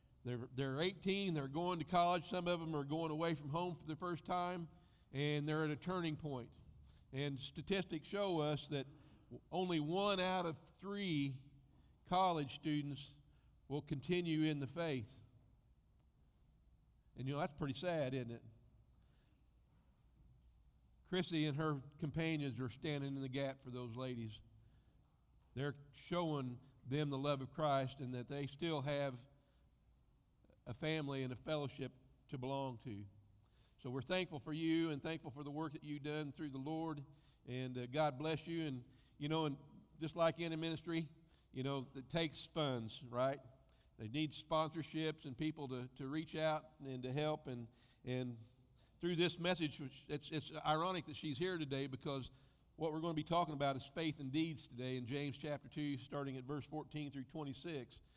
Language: English